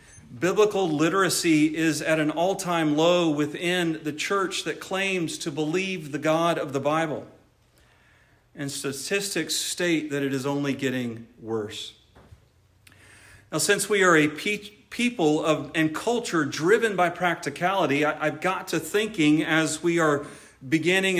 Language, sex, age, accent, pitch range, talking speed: English, male, 40-59, American, 140-175 Hz, 140 wpm